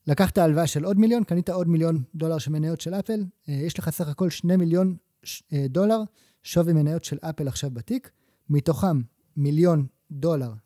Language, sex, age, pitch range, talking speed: Hebrew, male, 20-39, 135-175 Hz, 165 wpm